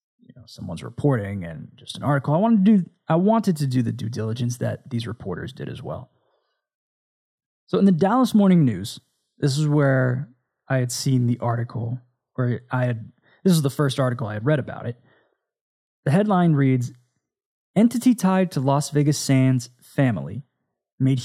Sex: male